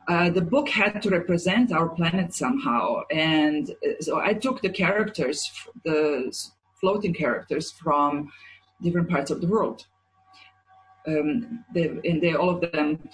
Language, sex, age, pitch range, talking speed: English, female, 40-59, 160-205 Hz, 140 wpm